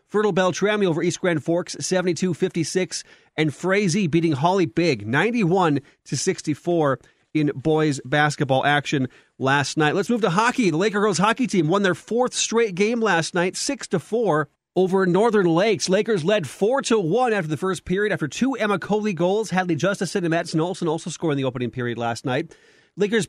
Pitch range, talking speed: 155-200 Hz, 180 wpm